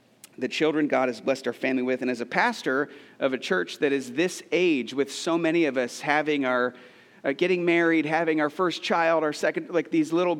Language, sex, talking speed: English, male, 220 wpm